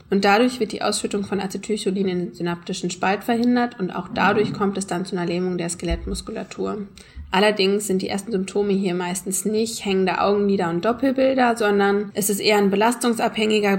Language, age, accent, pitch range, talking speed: German, 20-39, German, 180-210 Hz, 180 wpm